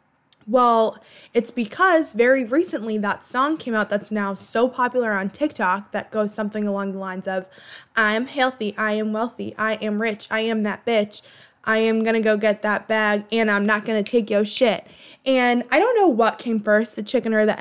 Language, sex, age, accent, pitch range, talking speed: English, female, 20-39, American, 200-240 Hz, 210 wpm